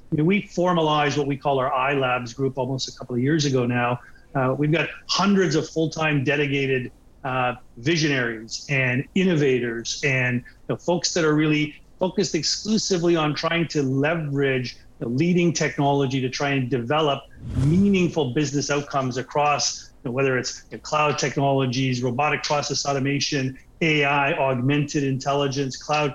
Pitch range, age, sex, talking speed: 135-160 Hz, 40-59, male, 140 wpm